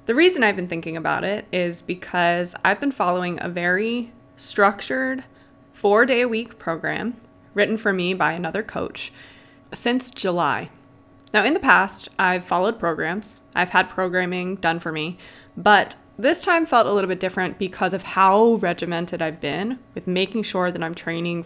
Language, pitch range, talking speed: English, 175-215 Hz, 170 wpm